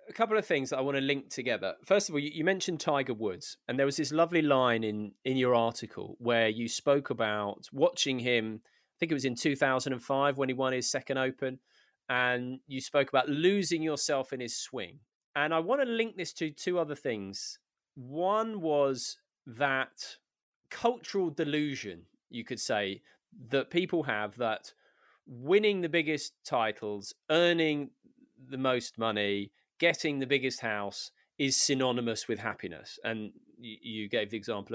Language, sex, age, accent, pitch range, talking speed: English, male, 20-39, British, 120-160 Hz, 170 wpm